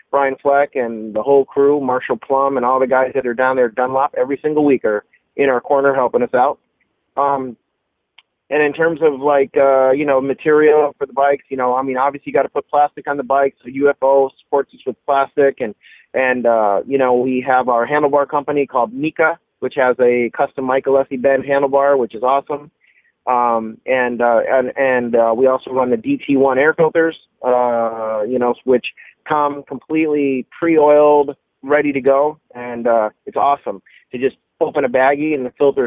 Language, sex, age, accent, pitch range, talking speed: English, male, 30-49, American, 130-150 Hz, 200 wpm